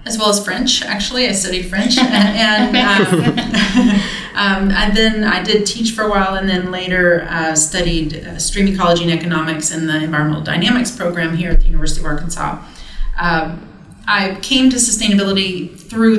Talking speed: 170 wpm